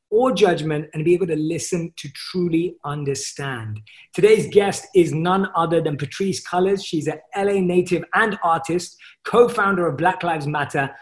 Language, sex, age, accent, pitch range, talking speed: English, male, 30-49, British, 150-185 Hz, 160 wpm